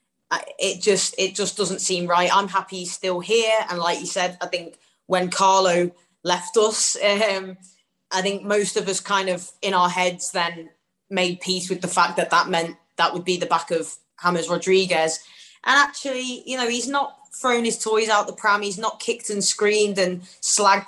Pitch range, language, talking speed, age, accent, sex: 180-220 Hz, English, 200 wpm, 20-39, British, female